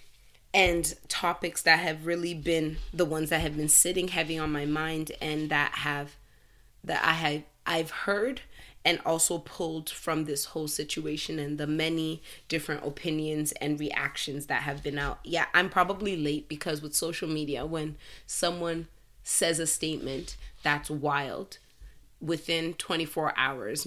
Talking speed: 150 wpm